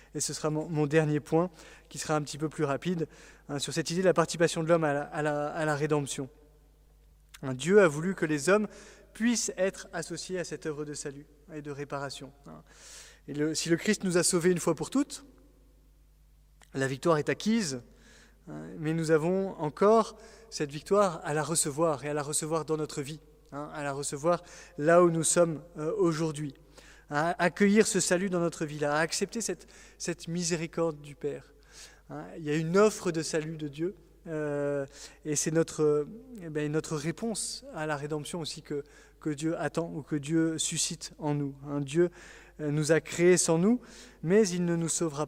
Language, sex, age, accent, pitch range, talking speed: French, male, 20-39, French, 150-175 Hz, 190 wpm